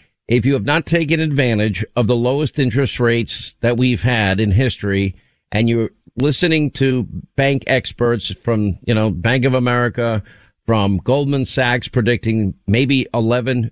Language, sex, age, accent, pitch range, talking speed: English, male, 50-69, American, 110-130 Hz, 150 wpm